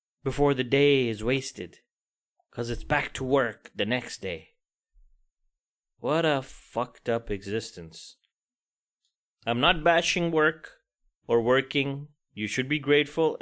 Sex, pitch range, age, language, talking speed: male, 110-160 Hz, 30-49, English, 125 wpm